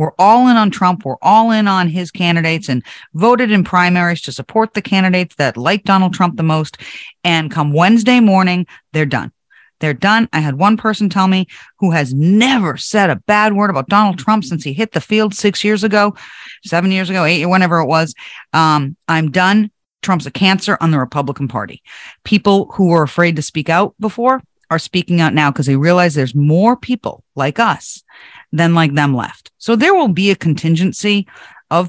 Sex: female